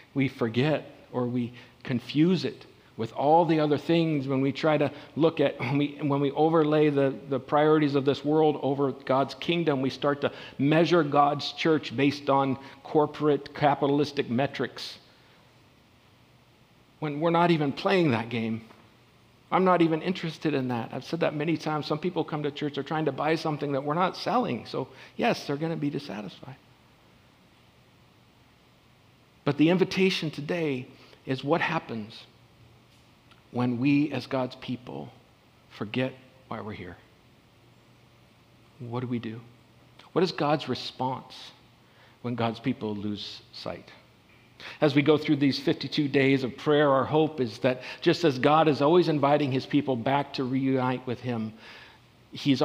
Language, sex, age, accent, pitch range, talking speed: English, male, 50-69, American, 125-150 Hz, 155 wpm